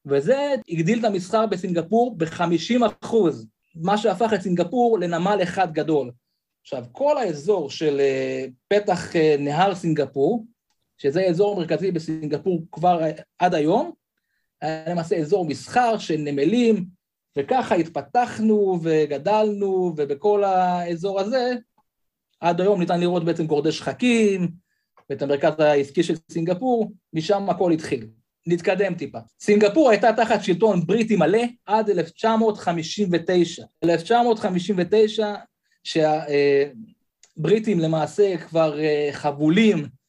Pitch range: 155-215 Hz